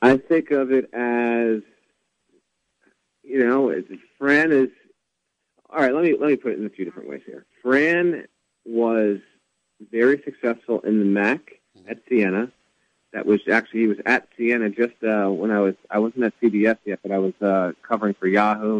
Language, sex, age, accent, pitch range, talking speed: English, male, 30-49, American, 100-125 Hz, 180 wpm